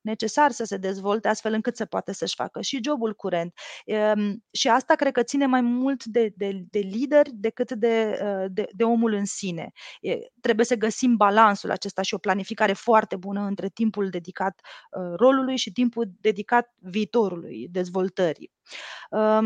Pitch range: 195-235 Hz